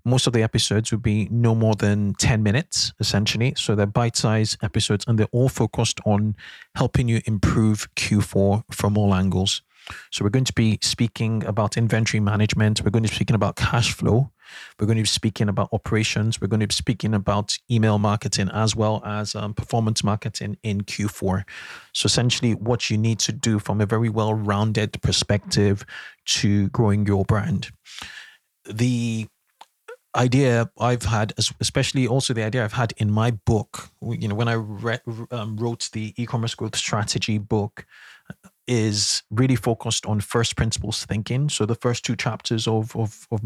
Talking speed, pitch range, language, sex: 170 wpm, 105-120 Hz, English, male